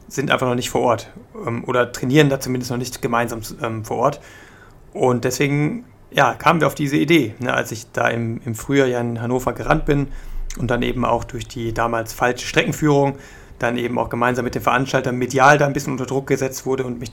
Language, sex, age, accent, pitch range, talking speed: German, male, 30-49, German, 120-140 Hz, 205 wpm